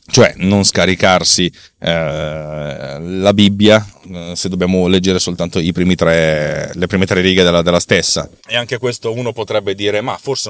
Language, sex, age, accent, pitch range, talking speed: Italian, male, 30-49, native, 90-120 Hz, 165 wpm